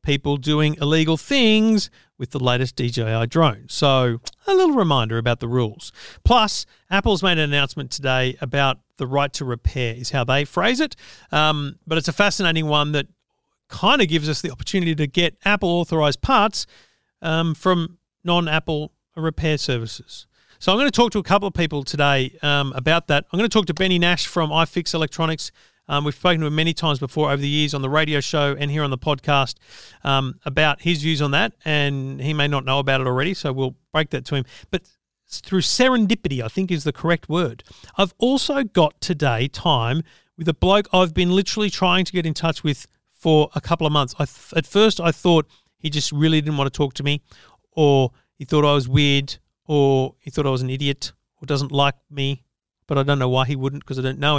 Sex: male